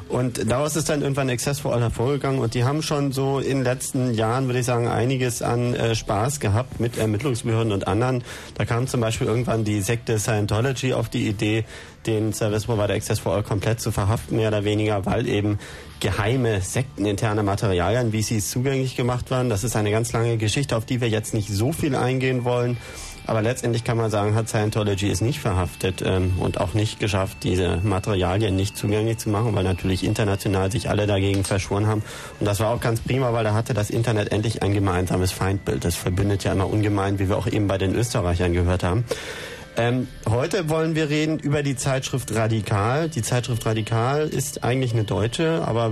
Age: 30-49